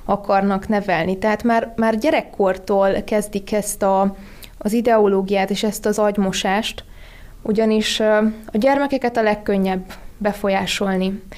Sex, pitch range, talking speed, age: female, 195-215 Hz, 110 wpm, 20-39